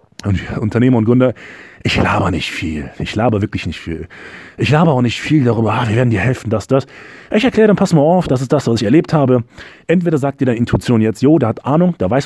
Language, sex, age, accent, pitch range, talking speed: German, male, 30-49, German, 110-160 Hz, 250 wpm